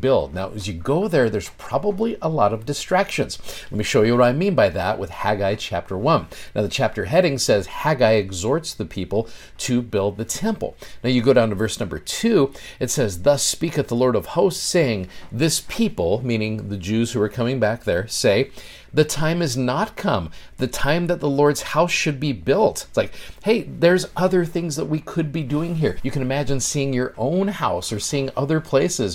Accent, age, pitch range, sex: American, 50-69, 105-150 Hz, male